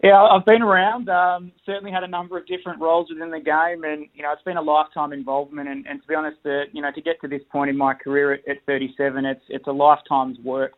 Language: English